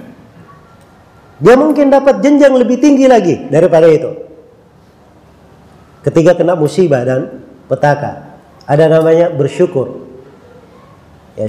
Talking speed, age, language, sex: 95 wpm, 40-59, Indonesian, male